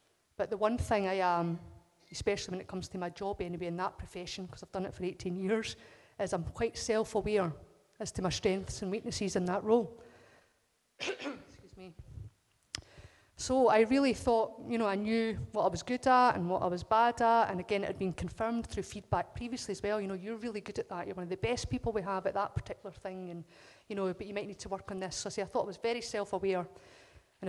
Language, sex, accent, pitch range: English, female, British, 185-225 Hz